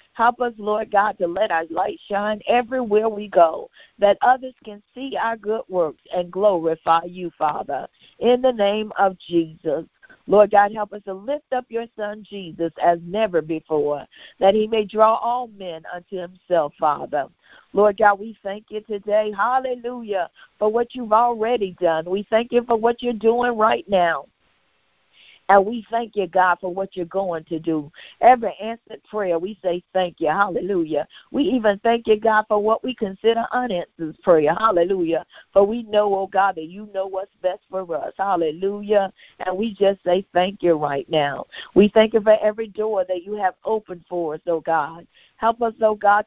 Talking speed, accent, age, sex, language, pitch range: 185 wpm, American, 50-69, female, English, 180-225 Hz